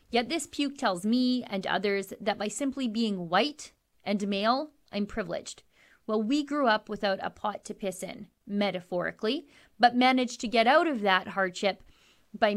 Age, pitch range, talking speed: 30-49, 195-240 Hz, 170 wpm